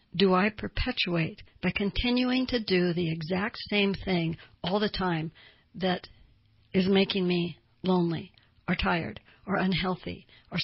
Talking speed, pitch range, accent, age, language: 135 wpm, 170-200 Hz, American, 60-79, English